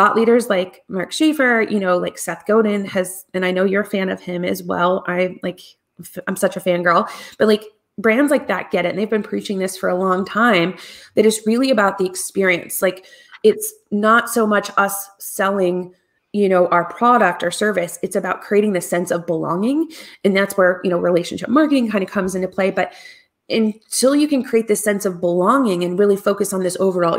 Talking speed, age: 210 wpm, 30-49